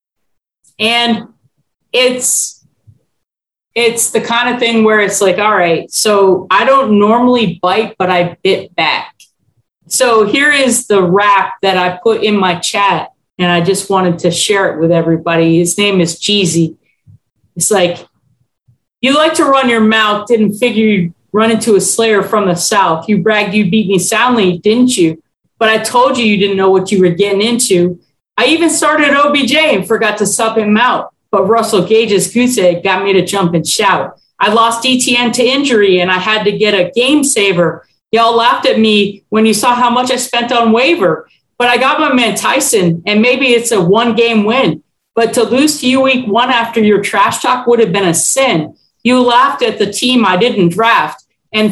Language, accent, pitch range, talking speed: English, American, 190-245 Hz, 195 wpm